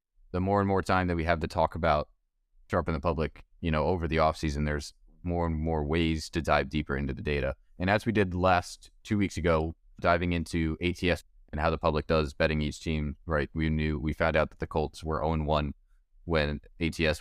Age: 20-39